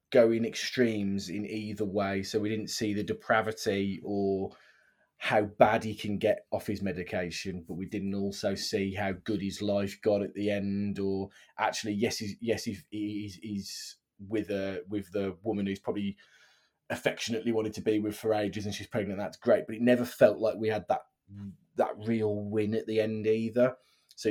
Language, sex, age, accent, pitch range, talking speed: English, male, 20-39, British, 100-125 Hz, 185 wpm